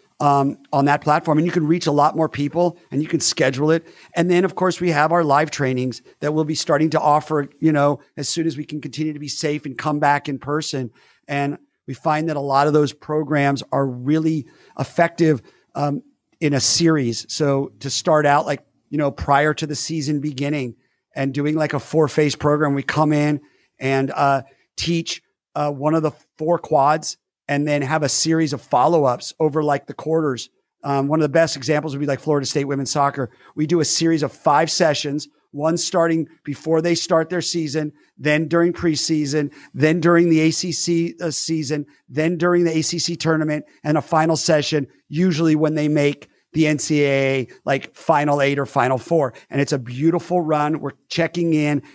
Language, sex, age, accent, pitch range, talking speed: English, male, 40-59, American, 145-160 Hz, 195 wpm